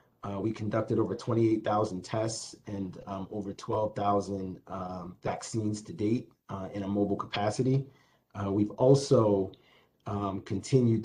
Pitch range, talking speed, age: 100-115 Hz, 125 wpm, 30-49